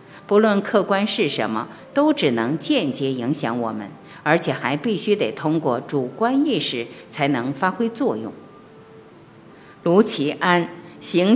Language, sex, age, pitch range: Chinese, female, 50-69, 140-215 Hz